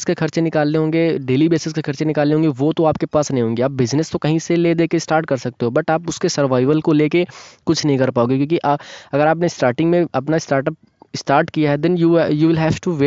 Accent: native